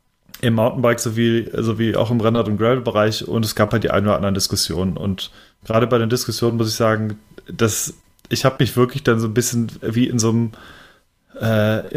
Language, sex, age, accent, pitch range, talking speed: German, male, 30-49, German, 110-130 Hz, 210 wpm